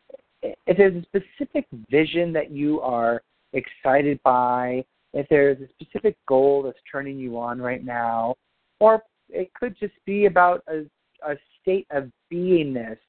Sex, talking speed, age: male, 145 wpm, 40-59